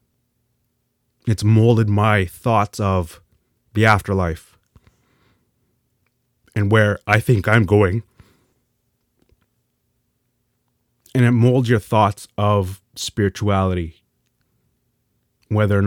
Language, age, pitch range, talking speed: English, 30-49, 95-120 Hz, 85 wpm